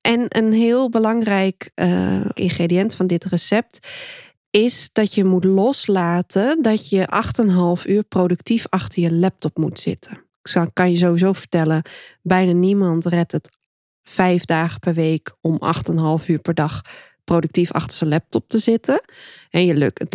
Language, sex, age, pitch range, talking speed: Dutch, female, 20-39, 165-200 Hz, 150 wpm